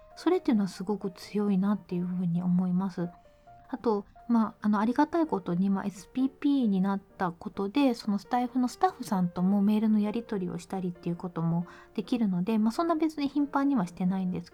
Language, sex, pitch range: Japanese, female, 185-235 Hz